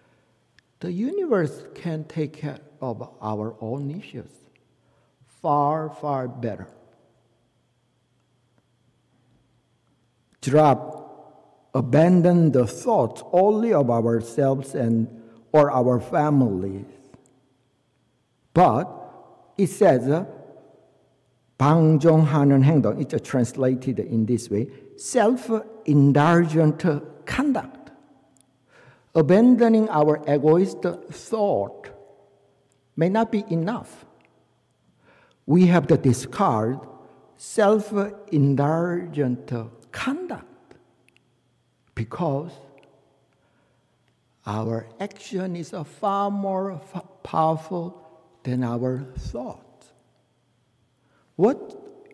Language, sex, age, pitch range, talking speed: English, male, 60-79, 125-175 Hz, 65 wpm